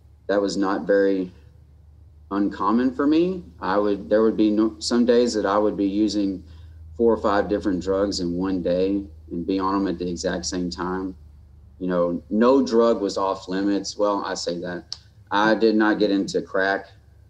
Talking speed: 185 wpm